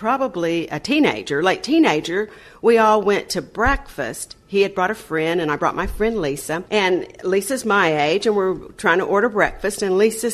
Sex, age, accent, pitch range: female, 50-69, American, 185-255 Hz